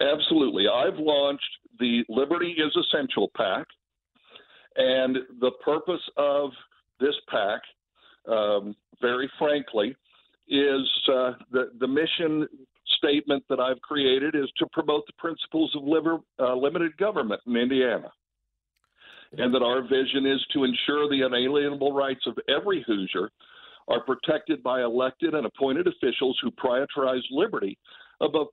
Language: English